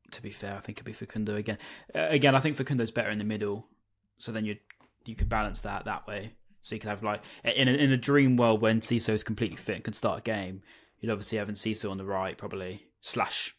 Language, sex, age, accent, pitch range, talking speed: English, male, 10-29, British, 105-120 Hz, 250 wpm